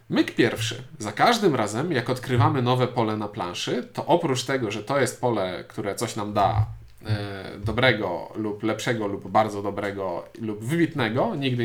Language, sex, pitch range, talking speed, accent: Polish, male, 115-155 Hz, 160 wpm, native